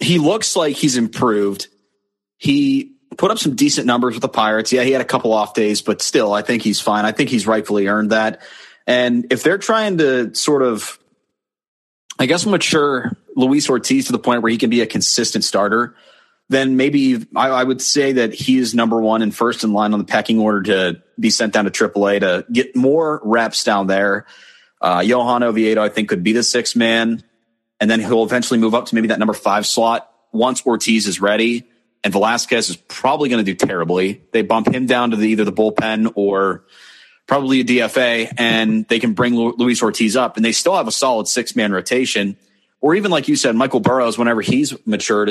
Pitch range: 110-130 Hz